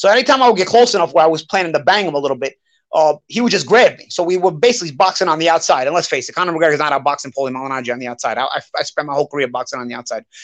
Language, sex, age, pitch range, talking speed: English, male, 30-49, 155-220 Hz, 320 wpm